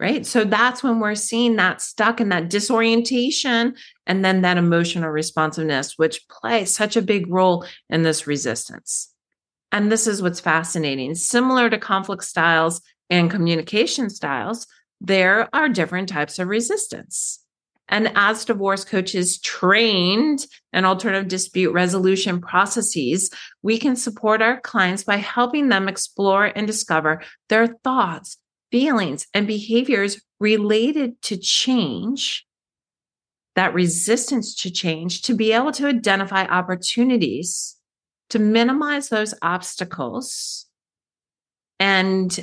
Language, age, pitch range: English, 40-59, 185-235 Hz